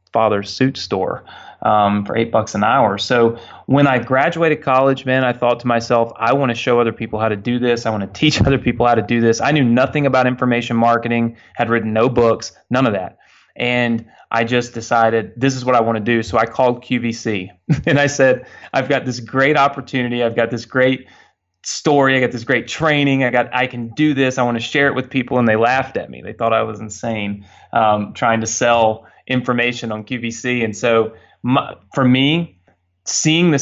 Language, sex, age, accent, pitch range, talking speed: English, male, 30-49, American, 110-125 Hz, 215 wpm